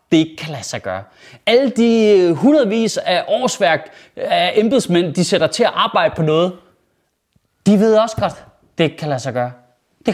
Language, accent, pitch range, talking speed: Danish, native, 175-260 Hz, 170 wpm